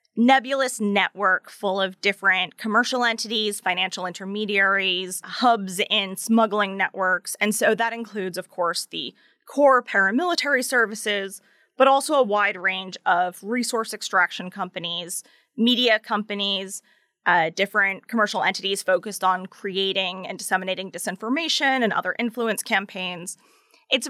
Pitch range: 190-245 Hz